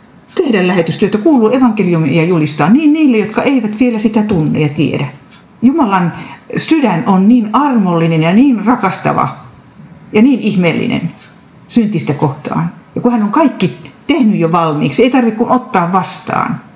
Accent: native